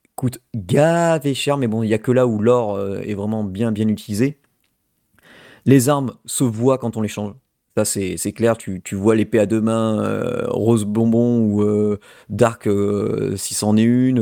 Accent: French